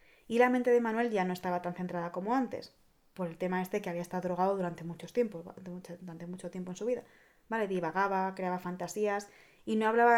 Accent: Spanish